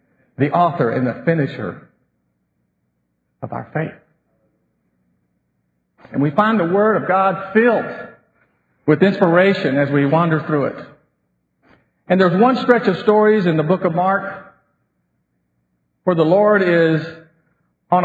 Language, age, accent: English, 50-69, American